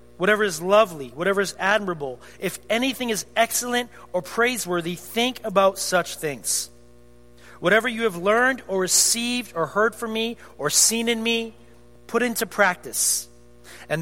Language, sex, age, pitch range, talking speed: English, male, 40-59, 150-230 Hz, 145 wpm